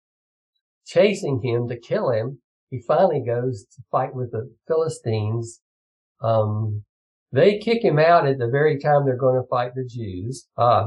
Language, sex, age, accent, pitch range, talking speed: English, male, 50-69, American, 120-155 Hz, 160 wpm